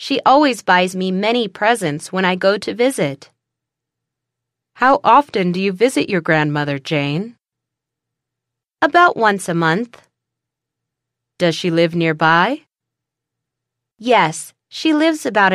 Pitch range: 150-230 Hz